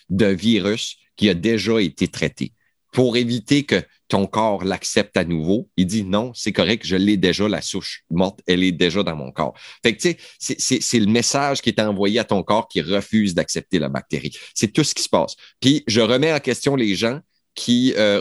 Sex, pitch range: male, 100-130 Hz